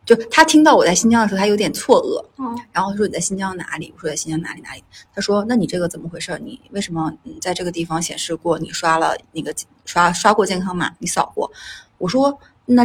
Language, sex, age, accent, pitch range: Chinese, female, 30-49, native, 165-205 Hz